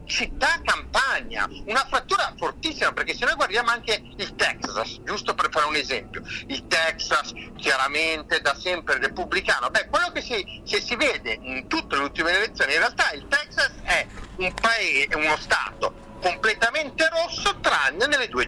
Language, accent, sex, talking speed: Italian, native, male, 155 wpm